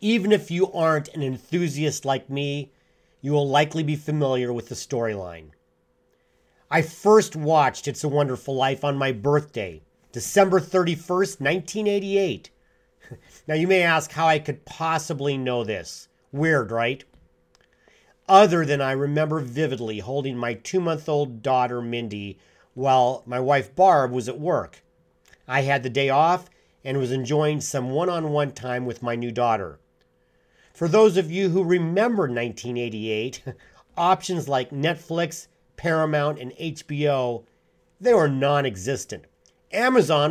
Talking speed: 140 wpm